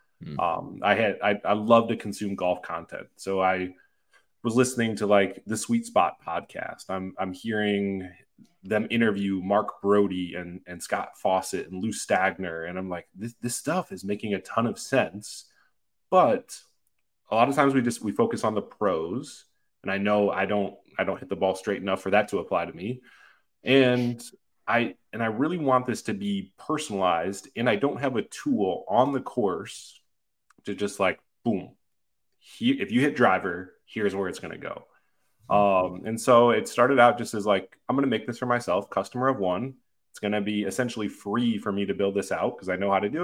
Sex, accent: male, American